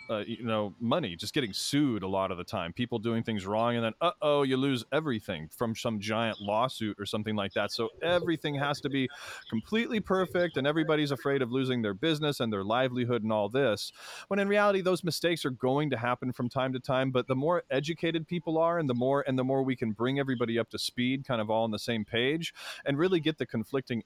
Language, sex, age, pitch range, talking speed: English, male, 30-49, 120-155 Hz, 235 wpm